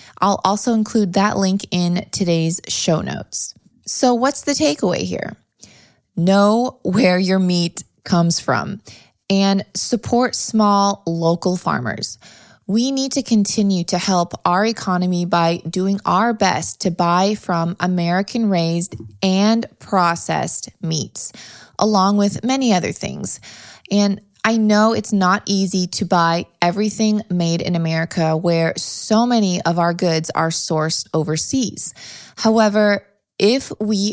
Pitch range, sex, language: 175-210 Hz, female, English